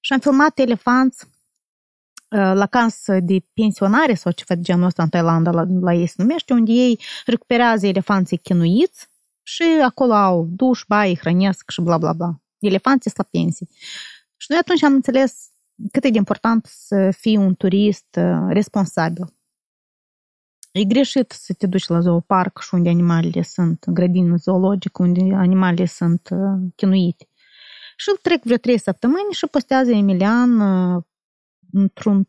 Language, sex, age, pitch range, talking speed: Romanian, female, 20-39, 180-250 Hz, 150 wpm